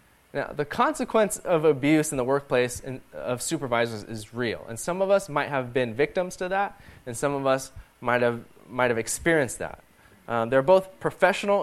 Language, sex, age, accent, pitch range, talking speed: English, male, 20-39, American, 120-160 Hz, 195 wpm